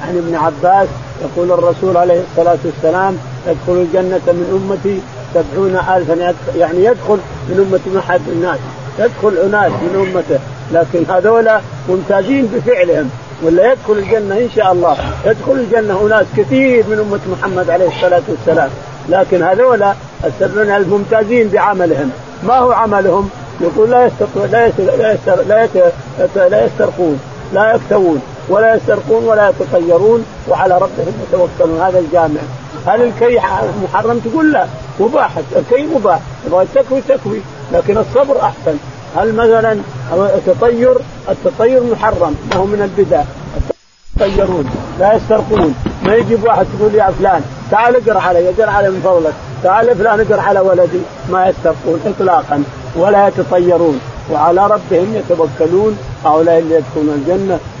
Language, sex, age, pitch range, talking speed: Arabic, male, 50-69, 170-220 Hz, 130 wpm